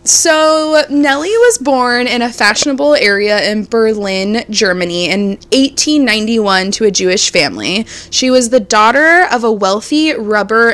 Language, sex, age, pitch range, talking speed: English, female, 20-39, 190-245 Hz, 140 wpm